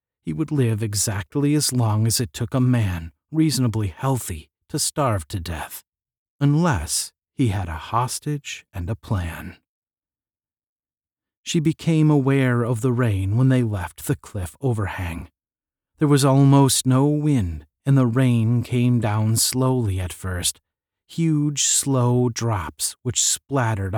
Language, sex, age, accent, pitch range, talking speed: English, male, 40-59, American, 95-135 Hz, 140 wpm